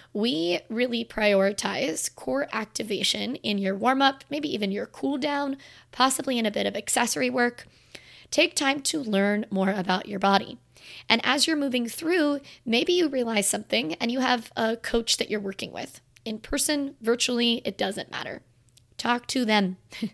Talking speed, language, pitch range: 160 wpm, English, 195-245 Hz